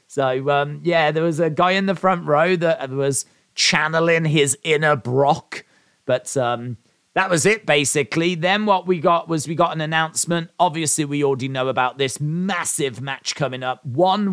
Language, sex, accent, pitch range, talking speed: English, male, British, 135-175 Hz, 180 wpm